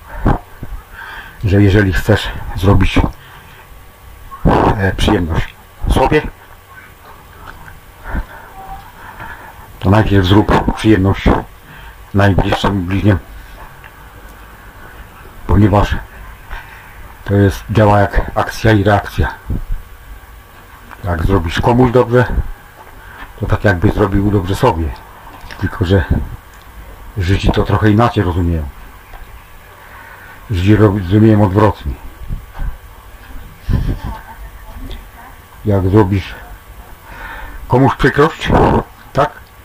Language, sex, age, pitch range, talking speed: English, male, 60-79, 90-110 Hz, 70 wpm